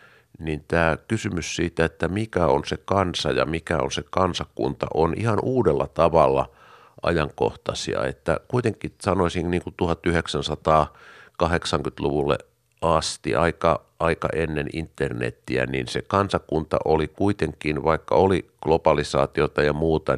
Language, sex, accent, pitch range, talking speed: Finnish, male, native, 75-90 Hz, 120 wpm